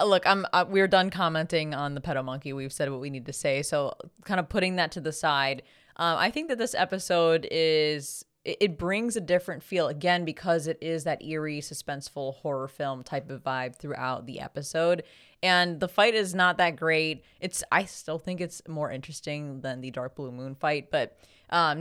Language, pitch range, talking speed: English, 140-170 Hz, 205 wpm